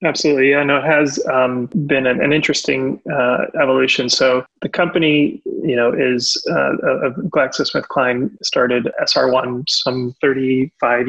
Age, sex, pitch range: 20-39, male, 120-130 Hz